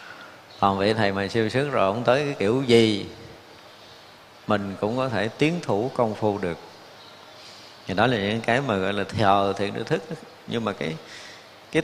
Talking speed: 190 wpm